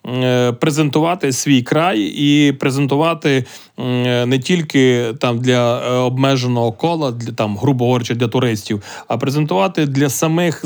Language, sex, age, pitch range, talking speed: Ukrainian, male, 30-49, 130-155 Hz, 120 wpm